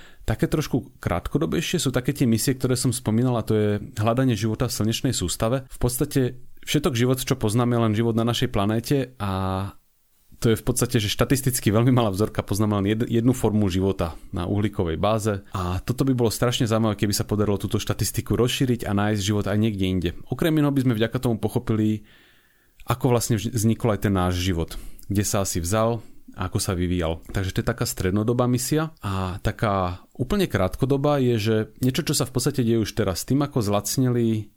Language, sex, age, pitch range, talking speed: Slovak, male, 30-49, 100-125 Hz, 185 wpm